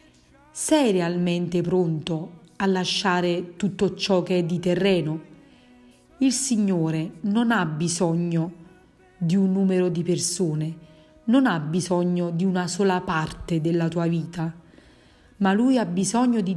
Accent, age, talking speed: native, 40-59, 130 wpm